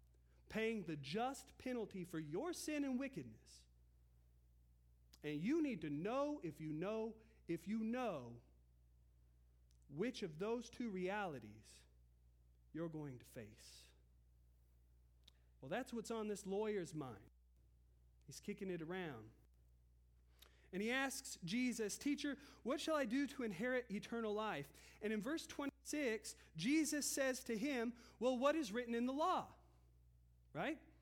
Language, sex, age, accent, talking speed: English, male, 40-59, American, 135 wpm